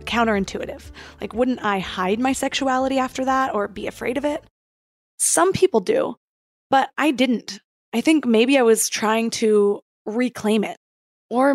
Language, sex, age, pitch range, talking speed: English, female, 20-39, 210-260 Hz, 155 wpm